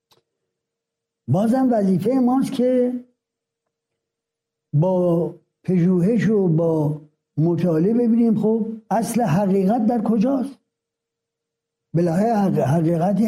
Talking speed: 75 wpm